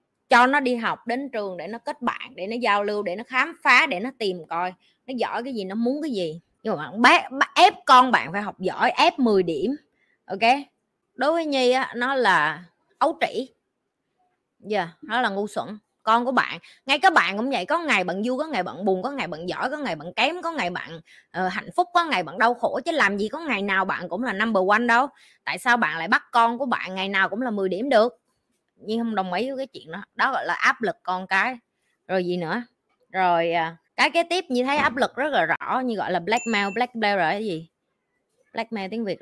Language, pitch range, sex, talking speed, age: Vietnamese, 190-260 Hz, female, 245 wpm, 20-39